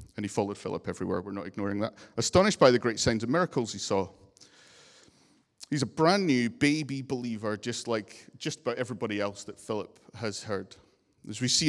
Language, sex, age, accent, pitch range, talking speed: English, male, 40-59, British, 110-145 Hz, 190 wpm